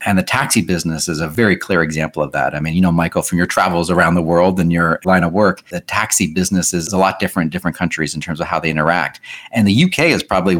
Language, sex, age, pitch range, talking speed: English, male, 40-59, 85-100 Hz, 270 wpm